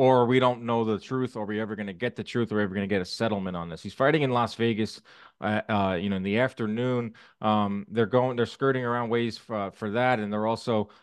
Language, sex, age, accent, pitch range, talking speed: English, male, 20-39, American, 115-160 Hz, 265 wpm